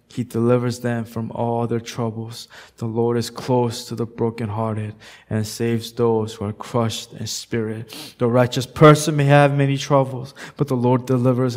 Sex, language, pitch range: male, English, 135-225 Hz